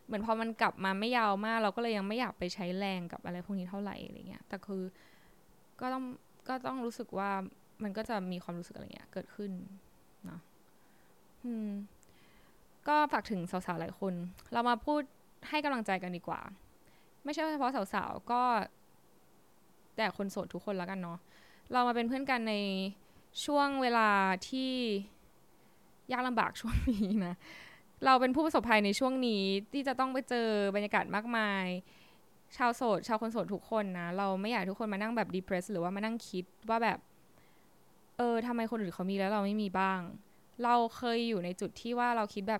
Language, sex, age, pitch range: Thai, female, 10-29, 190-235 Hz